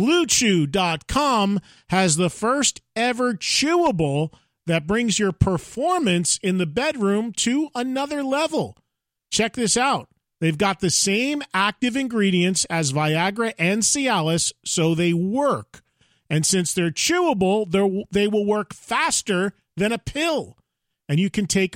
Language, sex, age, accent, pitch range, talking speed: English, male, 40-59, American, 175-245 Hz, 130 wpm